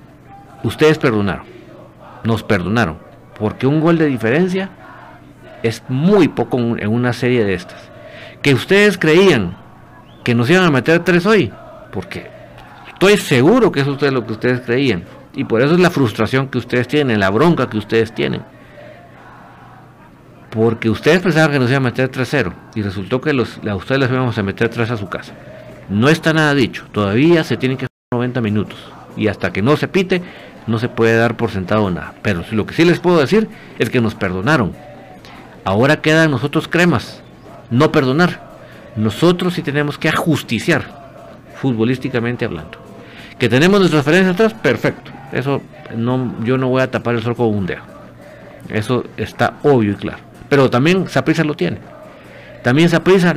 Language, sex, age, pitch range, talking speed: Spanish, male, 50-69, 115-155 Hz, 170 wpm